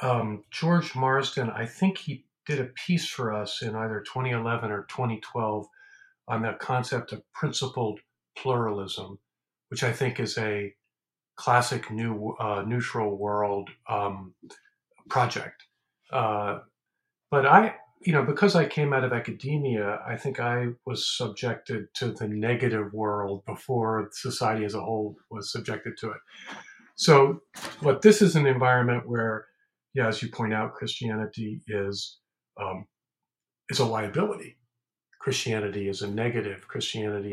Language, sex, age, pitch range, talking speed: English, male, 50-69, 105-135 Hz, 140 wpm